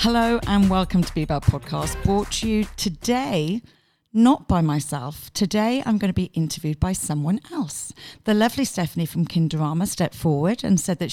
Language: English